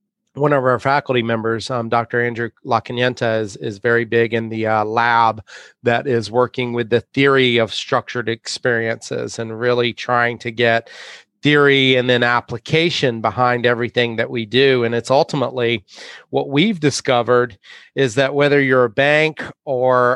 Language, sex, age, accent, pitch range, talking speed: English, male, 30-49, American, 120-135 Hz, 160 wpm